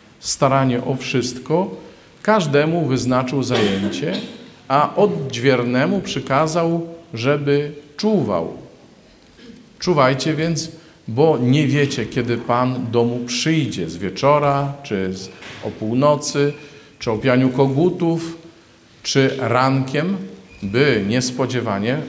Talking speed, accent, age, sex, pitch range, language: 90 wpm, native, 50-69, male, 120-155 Hz, Polish